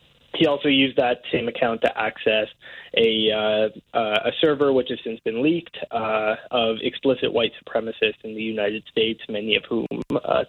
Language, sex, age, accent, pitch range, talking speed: English, male, 20-39, American, 110-135 Hz, 175 wpm